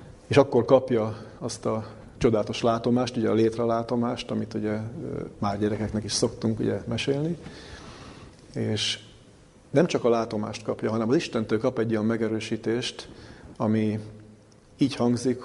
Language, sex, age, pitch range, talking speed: Hungarian, male, 40-59, 110-120 Hz, 130 wpm